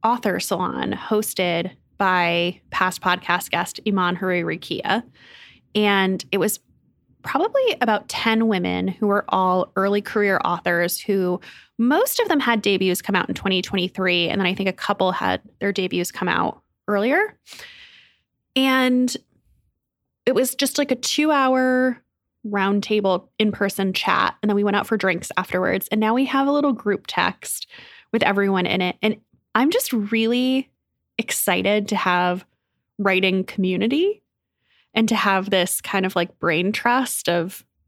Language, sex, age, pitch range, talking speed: English, female, 20-39, 185-225 Hz, 150 wpm